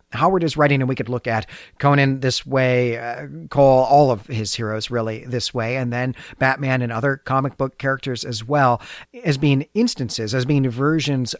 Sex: male